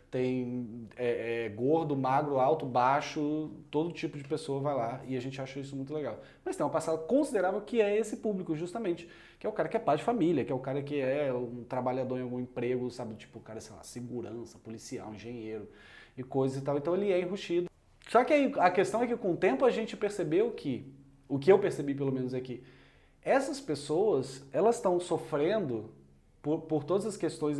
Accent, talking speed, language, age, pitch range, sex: Brazilian, 205 wpm, Portuguese, 20-39, 130-205 Hz, male